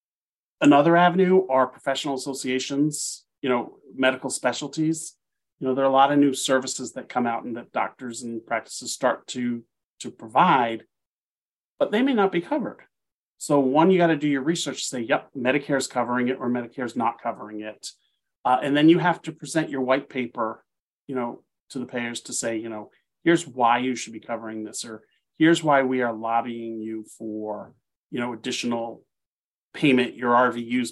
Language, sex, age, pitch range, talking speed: English, male, 30-49, 120-150 Hz, 185 wpm